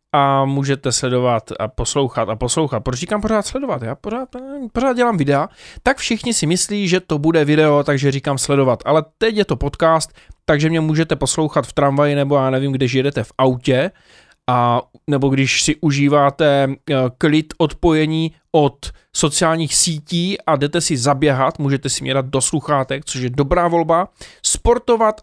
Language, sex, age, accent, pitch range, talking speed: Czech, male, 20-39, native, 135-180 Hz, 165 wpm